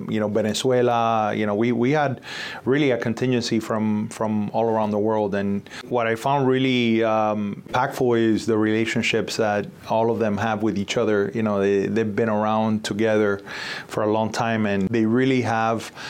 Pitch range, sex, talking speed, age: 110-125 Hz, male, 185 wpm, 30-49